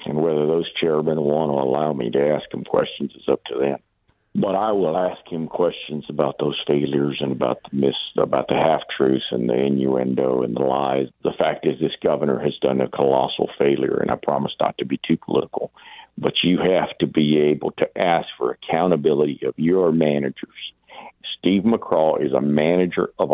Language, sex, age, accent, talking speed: English, male, 60-79, American, 195 wpm